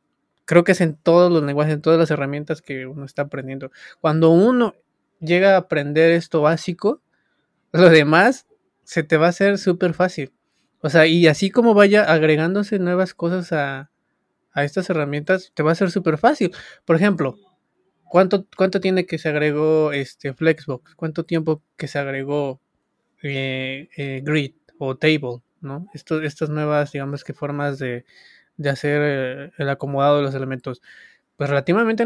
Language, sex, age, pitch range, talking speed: English, male, 20-39, 145-190 Hz, 155 wpm